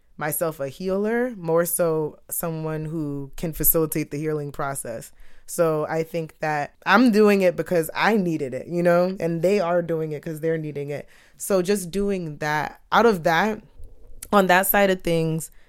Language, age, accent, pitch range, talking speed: English, 20-39, American, 150-195 Hz, 175 wpm